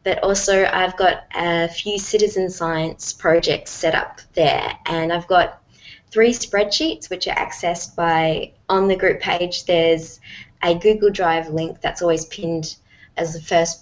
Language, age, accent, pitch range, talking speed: English, 20-39, Australian, 155-180 Hz, 155 wpm